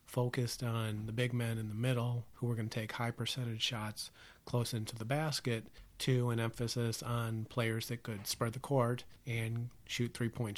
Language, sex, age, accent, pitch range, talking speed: English, male, 40-59, American, 110-130 Hz, 185 wpm